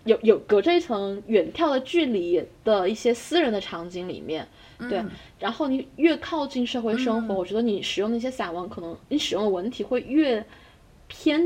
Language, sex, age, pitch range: Chinese, female, 10-29, 185-250 Hz